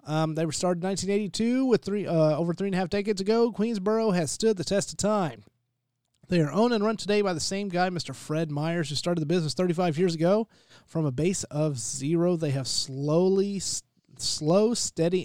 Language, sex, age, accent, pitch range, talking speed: English, male, 30-49, American, 145-190 Hz, 215 wpm